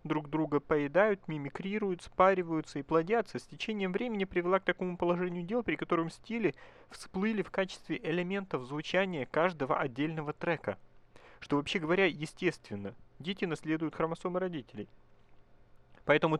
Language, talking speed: Russian, 130 wpm